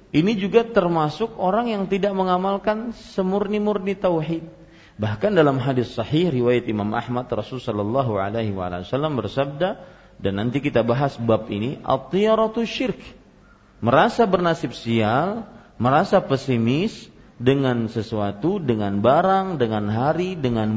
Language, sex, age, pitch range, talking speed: Malay, male, 40-59, 115-180 Hz, 115 wpm